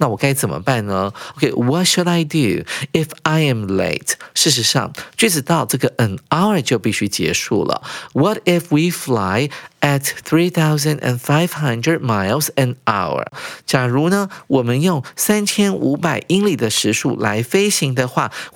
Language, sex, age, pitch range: Chinese, male, 50-69, 120-175 Hz